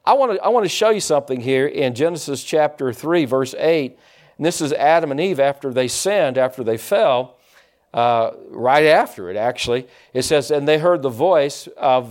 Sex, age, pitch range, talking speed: male, 50-69, 130-170 Hz, 205 wpm